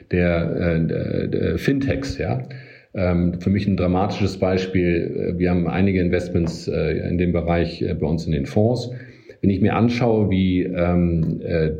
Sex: male